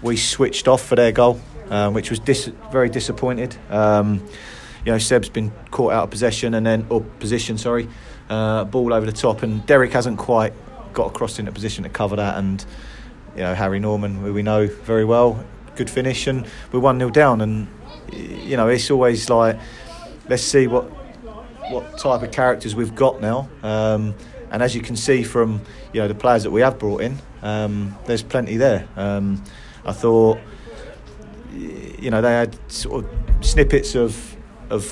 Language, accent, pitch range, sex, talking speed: English, British, 105-125 Hz, male, 185 wpm